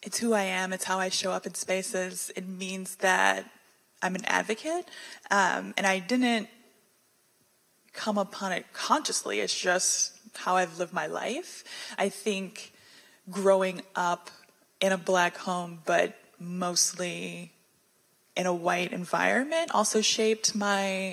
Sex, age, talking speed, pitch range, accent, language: female, 20-39, 140 wpm, 180-210 Hz, American, English